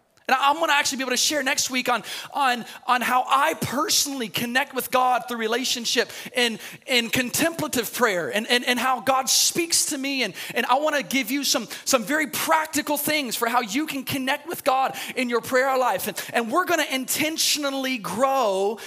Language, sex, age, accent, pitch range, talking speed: English, male, 30-49, American, 200-270 Hz, 200 wpm